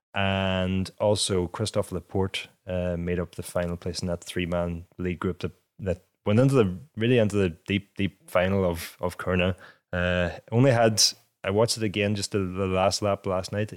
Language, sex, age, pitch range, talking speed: English, male, 20-39, 90-105 Hz, 185 wpm